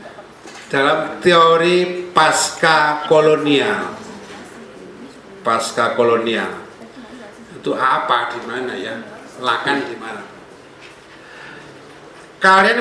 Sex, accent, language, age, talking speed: male, native, Indonesian, 60-79, 60 wpm